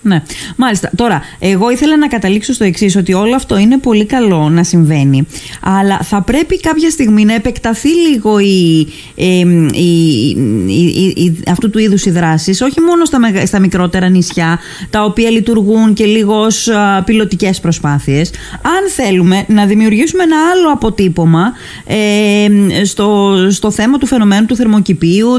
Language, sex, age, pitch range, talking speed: Greek, female, 20-39, 185-230 Hz, 150 wpm